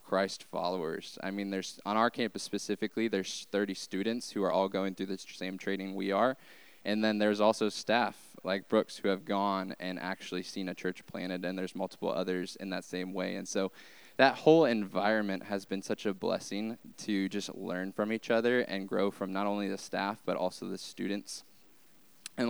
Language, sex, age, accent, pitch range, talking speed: English, male, 10-29, American, 95-110 Hz, 195 wpm